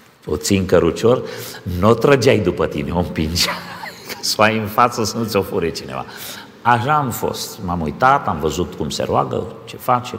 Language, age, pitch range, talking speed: Romanian, 50-69, 95-125 Hz, 175 wpm